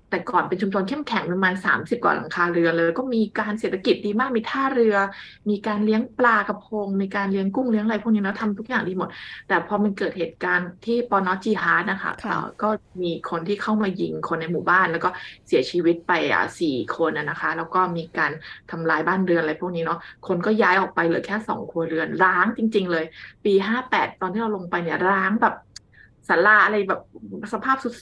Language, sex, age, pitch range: Thai, female, 20-39, 175-210 Hz